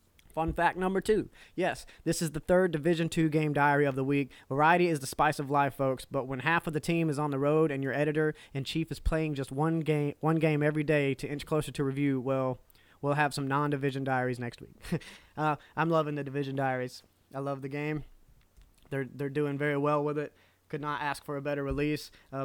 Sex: male